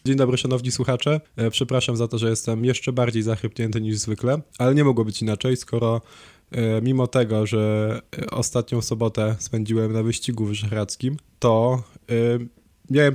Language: Polish